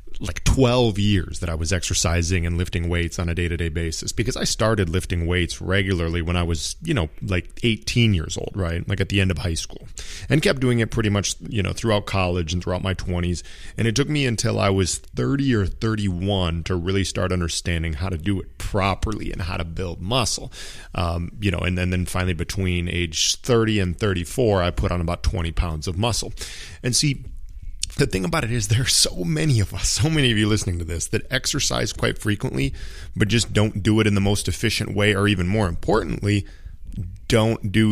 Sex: male